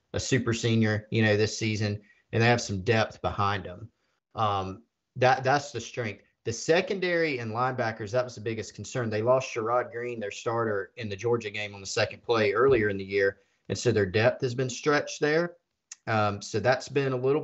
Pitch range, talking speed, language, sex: 105-125 Hz, 205 wpm, English, male